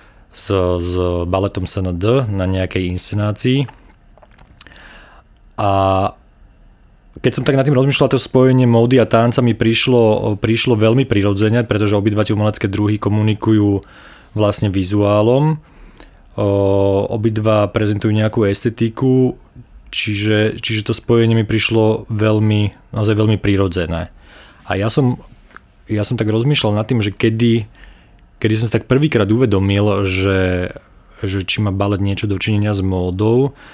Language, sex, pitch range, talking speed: Slovak, male, 100-110 Hz, 130 wpm